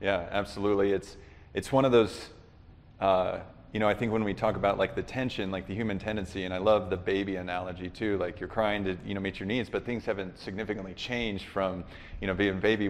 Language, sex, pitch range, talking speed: English, male, 95-105 Hz, 235 wpm